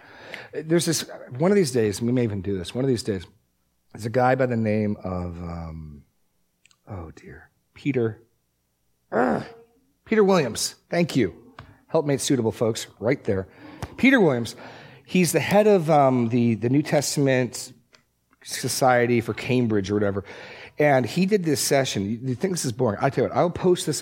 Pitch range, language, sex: 110-145 Hz, English, male